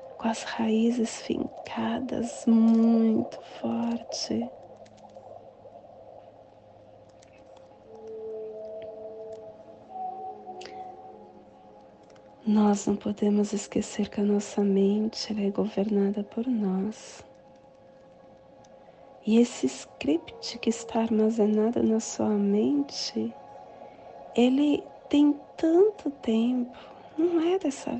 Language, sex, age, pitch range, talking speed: Portuguese, female, 40-59, 205-255 Hz, 75 wpm